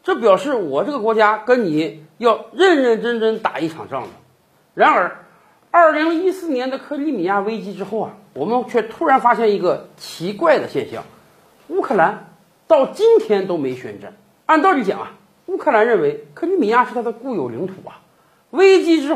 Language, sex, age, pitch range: Chinese, male, 50-69, 210-325 Hz